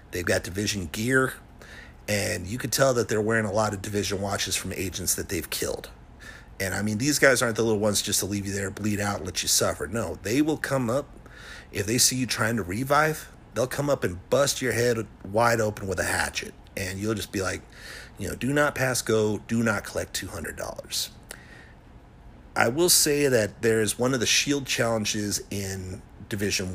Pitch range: 100-130 Hz